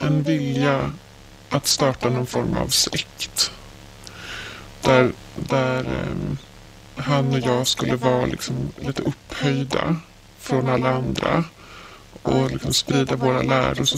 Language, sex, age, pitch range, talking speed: Swedish, female, 20-39, 120-155 Hz, 120 wpm